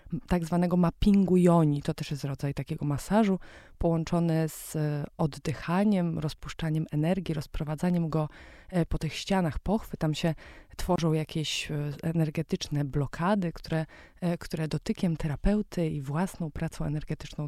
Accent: native